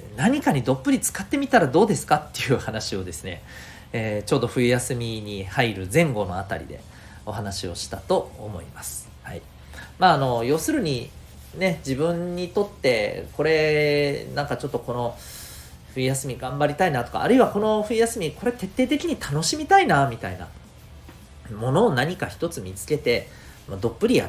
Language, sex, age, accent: Japanese, male, 40-59, native